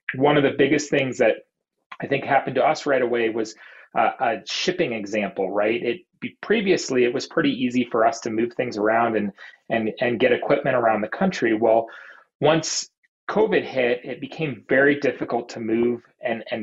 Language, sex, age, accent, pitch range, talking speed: English, male, 30-49, American, 110-145 Hz, 175 wpm